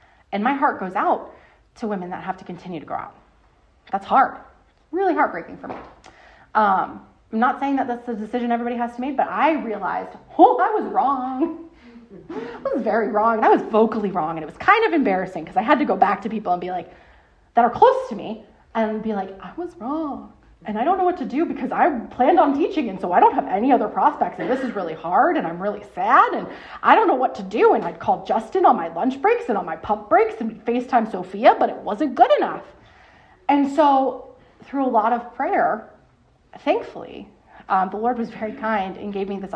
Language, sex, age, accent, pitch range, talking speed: English, female, 30-49, American, 210-305 Hz, 230 wpm